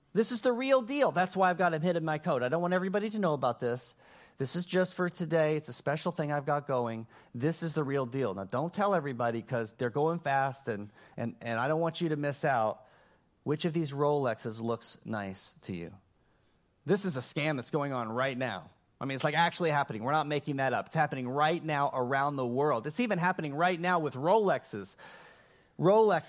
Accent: American